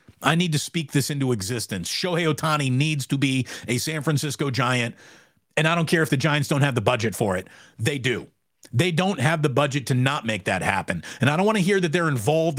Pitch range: 115-155 Hz